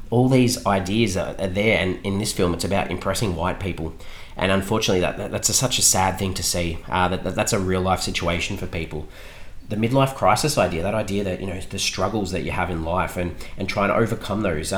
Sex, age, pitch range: male, 30-49, 85-105 Hz